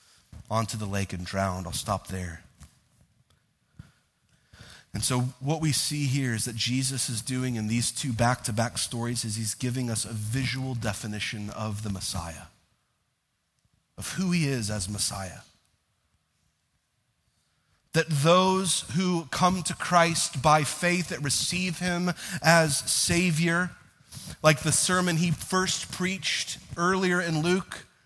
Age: 30-49